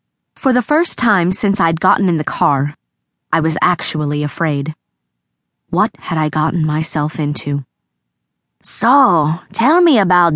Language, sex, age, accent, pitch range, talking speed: English, female, 20-39, American, 140-170 Hz, 140 wpm